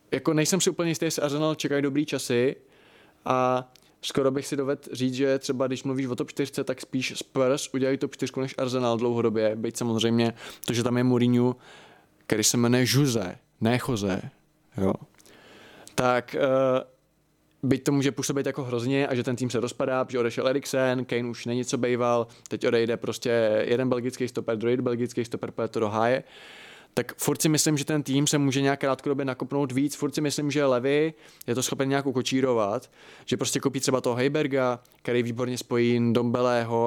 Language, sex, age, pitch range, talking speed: Czech, male, 20-39, 120-145 Hz, 180 wpm